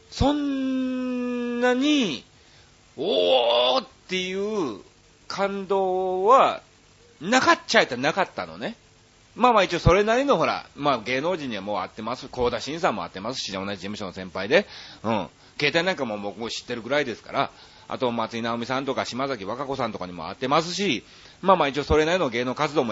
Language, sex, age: Japanese, male, 40-59